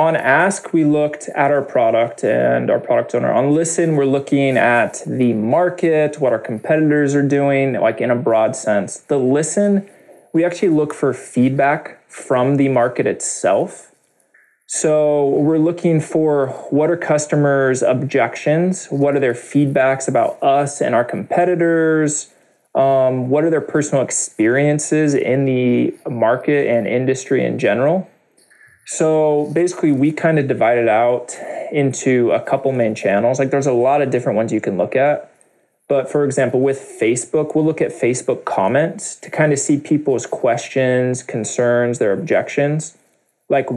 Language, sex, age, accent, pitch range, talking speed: English, male, 20-39, American, 125-150 Hz, 155 wpm